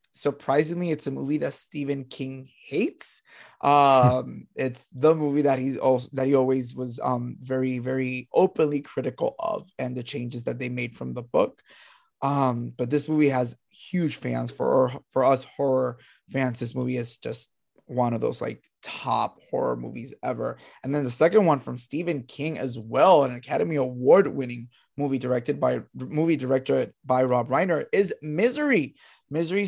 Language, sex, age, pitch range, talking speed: English, male, 20-39, 130-155 Hz, 170 wpm